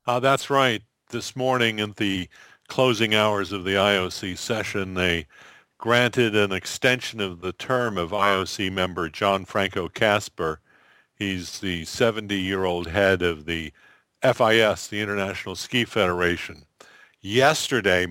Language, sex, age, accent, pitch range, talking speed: English, male, 50-69, American, 95-115 Hz, 125 wpm